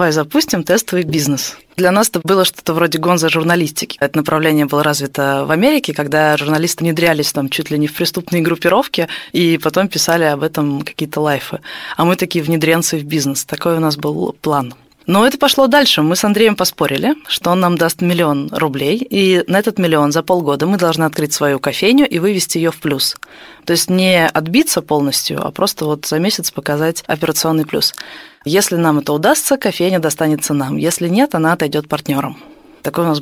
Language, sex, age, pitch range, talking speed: Russian, female, 20-39, 150-185 Hz, 185 wpm